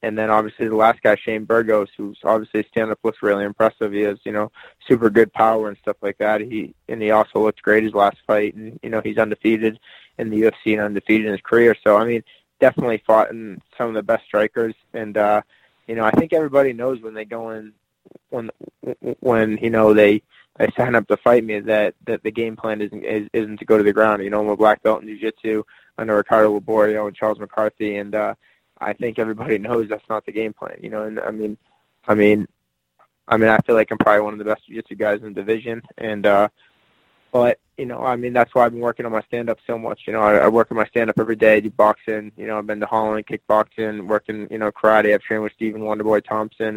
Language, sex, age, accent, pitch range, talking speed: English, male, 20-39, American, 105-110 Hz, 240 wpm